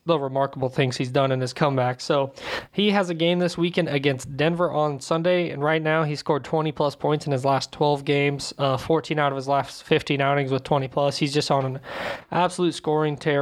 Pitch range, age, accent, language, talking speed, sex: 140-165 Hz, 20-39, American, English, 225 wpm, male